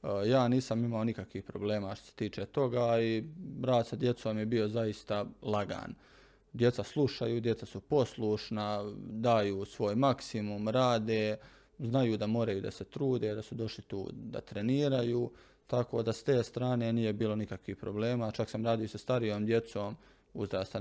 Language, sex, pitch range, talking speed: Croatian, male, 105-125 Hz, 155 wpm